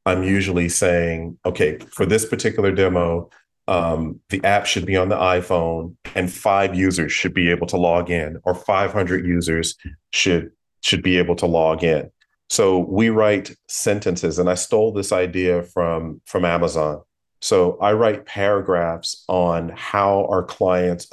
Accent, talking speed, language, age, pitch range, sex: American, 155 wpm, English, 40-59, 85-95 Hz, male